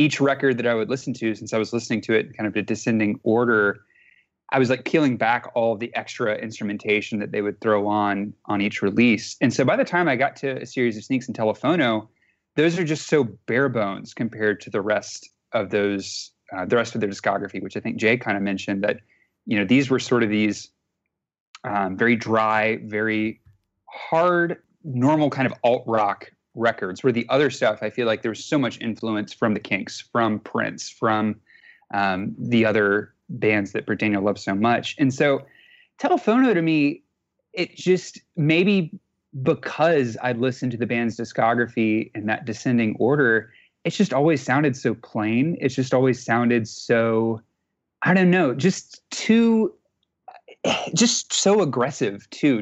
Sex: male